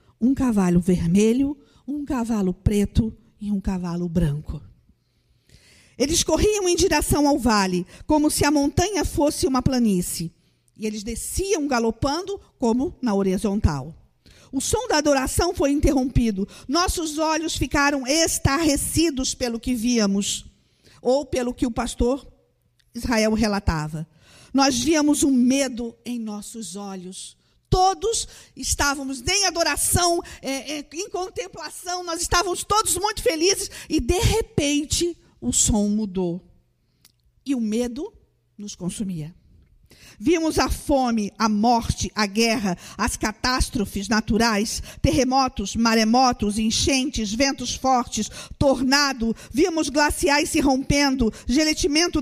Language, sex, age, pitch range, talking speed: Portuguese, female, 50-69, 215-310 Hz, 115 wpm